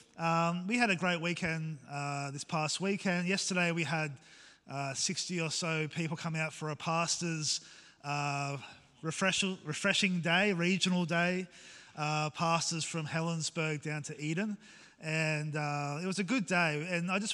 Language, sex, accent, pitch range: English, male, Australian, 150-180 Hz